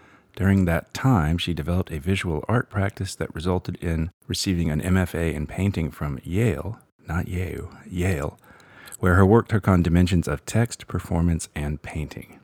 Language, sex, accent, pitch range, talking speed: English, male, American, 80-95 Hz, 155 wpm